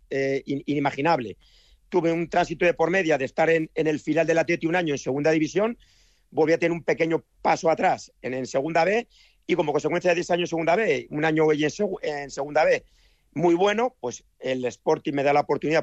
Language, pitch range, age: Spanish, 140-180 Hz, 40-59